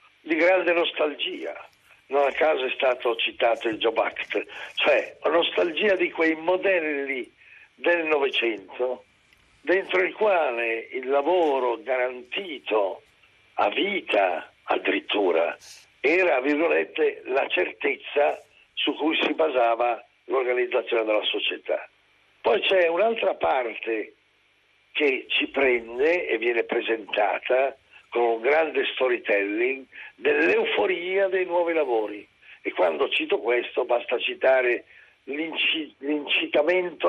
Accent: native